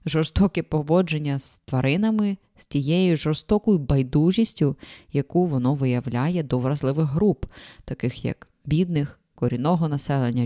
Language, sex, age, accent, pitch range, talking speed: Ukrainian, female, 20-39, native, 140-185 Hz, 110 wpm